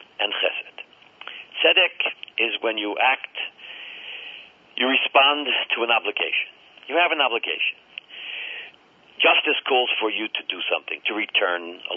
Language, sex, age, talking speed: English, male, 60-79, 130 wpm